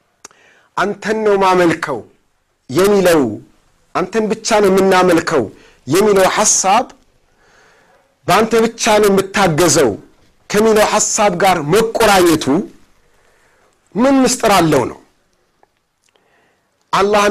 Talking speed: 75 wpm